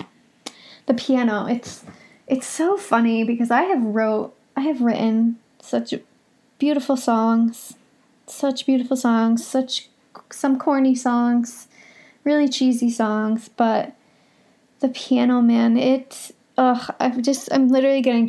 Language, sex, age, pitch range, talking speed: English, female, 20-39, 230-265 Hz, 120 wpm